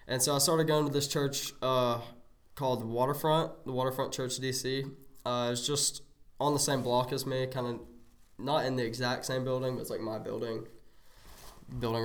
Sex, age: male, 10-29